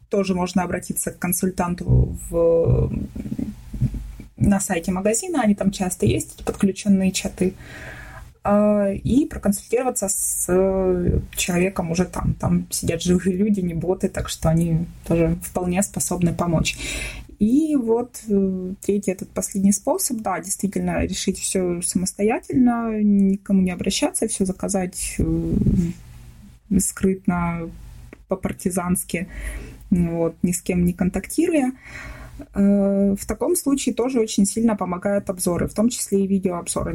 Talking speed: 115 wpm